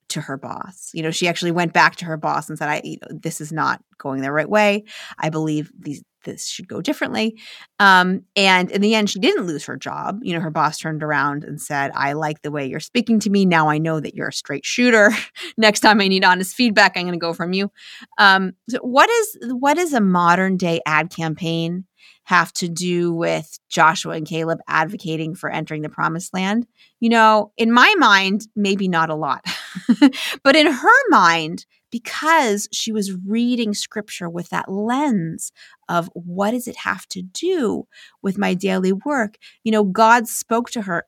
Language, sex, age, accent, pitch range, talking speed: English, female, 30-49, American, 165-220 Hz, 200 wpm